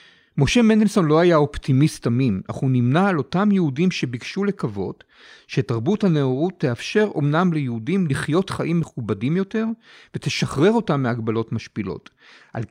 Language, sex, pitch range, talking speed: Hebrew, male, 125-175 Hz, 130 wpm